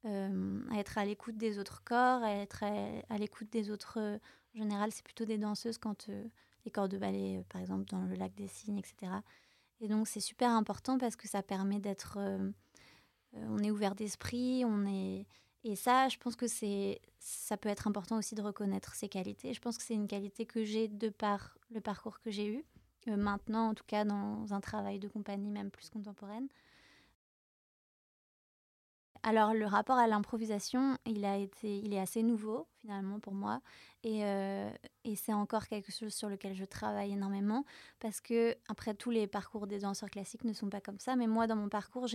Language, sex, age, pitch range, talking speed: French, female, 20-39, 200-225 Hz, 205 wpm